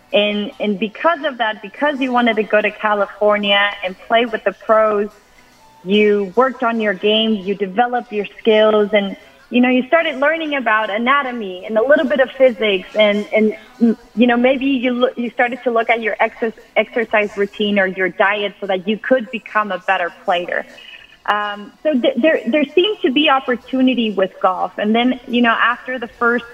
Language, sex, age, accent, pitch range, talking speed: English, female, 30-49, American, 200-235 Hz, 190 wpm